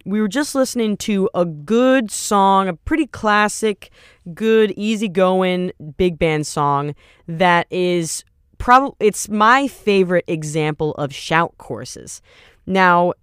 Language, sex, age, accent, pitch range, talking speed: English, female, 20-39, American, 160-200 Hz, 125 wpm